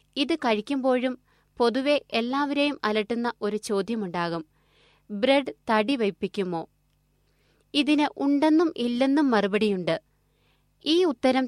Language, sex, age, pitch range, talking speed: Malayalam, female, 20-39, 210-275 Hz, 85 wpm